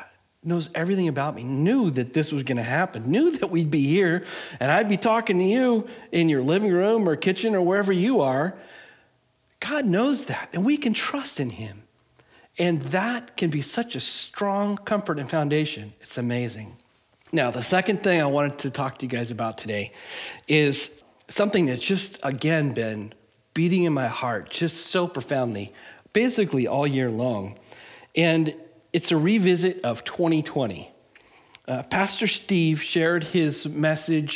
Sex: male